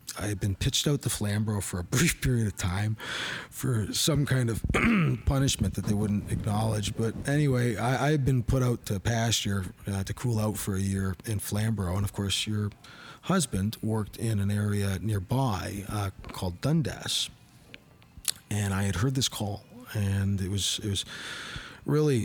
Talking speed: 175 wpm